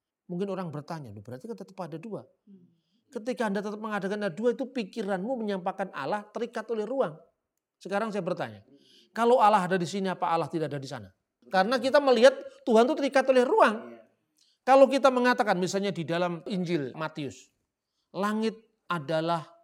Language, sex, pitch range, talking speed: Indonesian, male, 170-235 Hz, 160 wpm